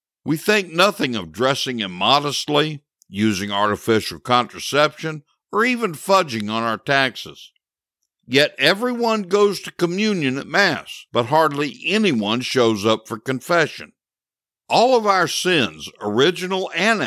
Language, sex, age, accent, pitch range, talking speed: English, male, 60-79, American, 115-180 Hz, 125 wpm